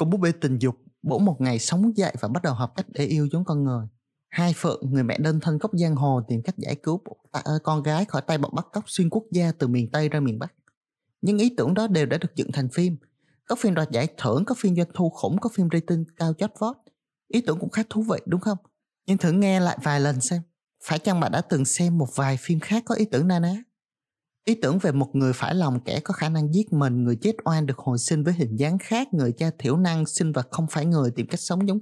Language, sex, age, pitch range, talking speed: Vietnamese, male, 20-39, 145-200 Hz, 270 wpm